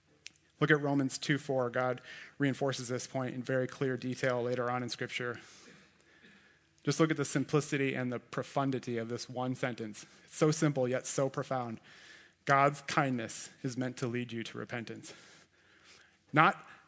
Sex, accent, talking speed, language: male, American, 155 wpm, English